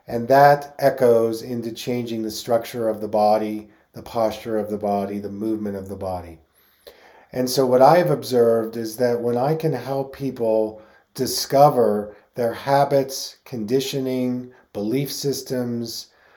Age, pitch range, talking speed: 40-59, 110-135 Hz, 145 wpm